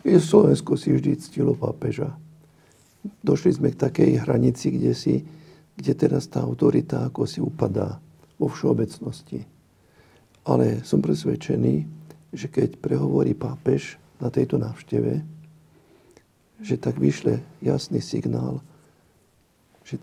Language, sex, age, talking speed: Slovak, male, 50-69, 110 wpm